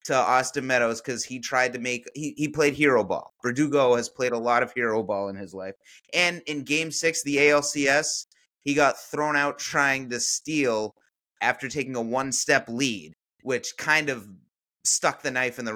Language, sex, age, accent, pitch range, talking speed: English, male, 30-49, American, 115-145 Hz, 195 wpm